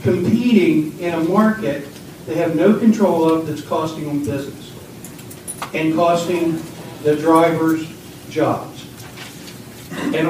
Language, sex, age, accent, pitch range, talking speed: English, male, 60-79, American, 165-245 Hz, 110 wpm